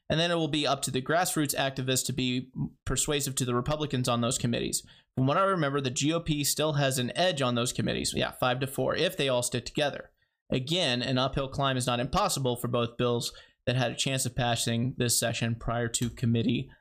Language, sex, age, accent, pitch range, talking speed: English, male, 30-49, American, 120-140 Hz, 220 wpm